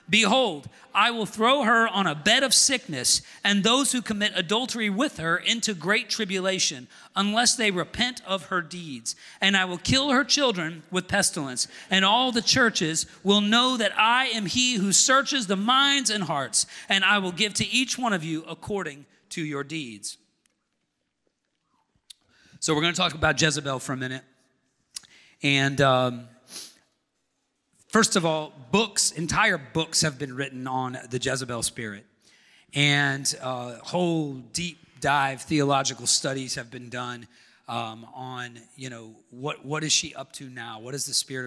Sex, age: male, 40-59